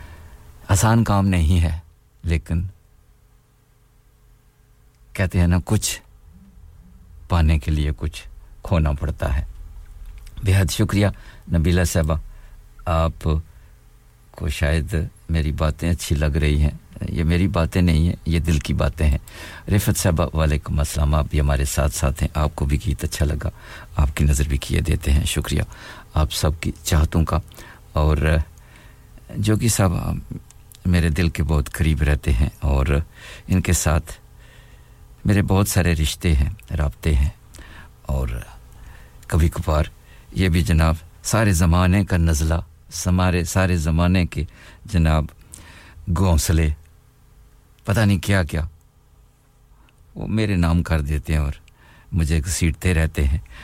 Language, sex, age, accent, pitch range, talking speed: English, male, 60-79, Indian, 75-95 Hz, 130 wpm